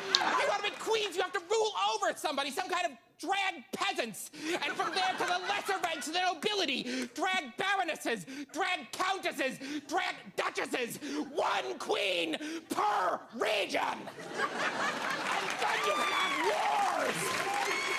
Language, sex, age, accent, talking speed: English, male, 30-49, American, 135 wpm